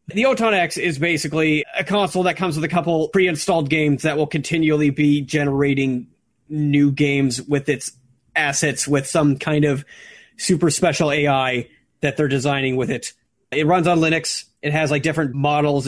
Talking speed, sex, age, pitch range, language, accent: 170 wpm, male, 30-49, 145-185 Hz, English, American